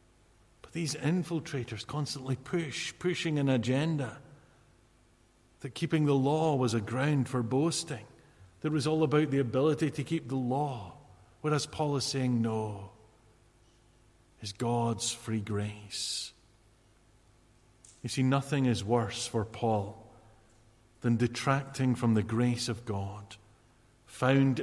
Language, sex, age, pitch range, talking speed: English, male, 50-69, 110-130 Hz, 125 wpm